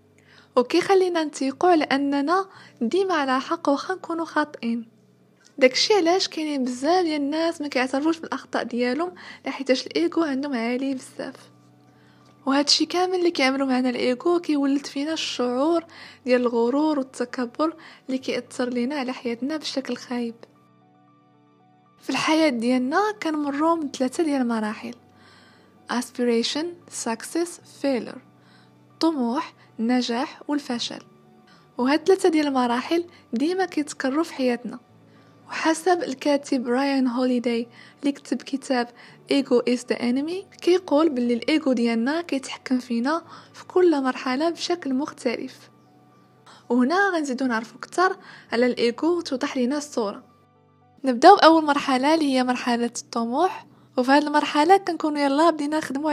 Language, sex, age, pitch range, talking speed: Arabic, female, 20-39, 250-320 Hz, 120 wpm